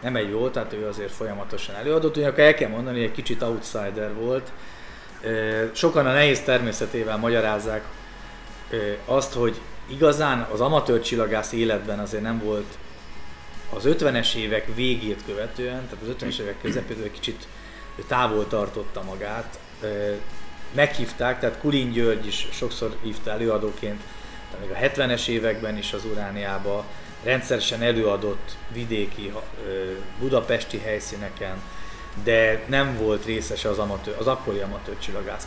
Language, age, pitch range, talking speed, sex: Hungarian, 30-49, 105-120 Hz, 130 wpm, male